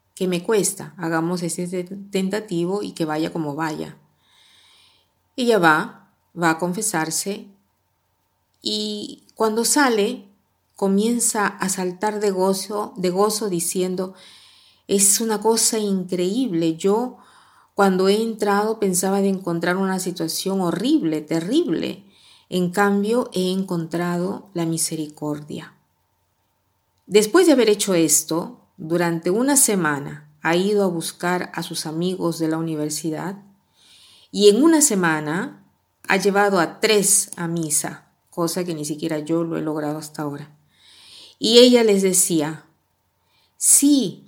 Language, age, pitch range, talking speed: Spanish, 40-59, 160-205 Hz, 125 wpm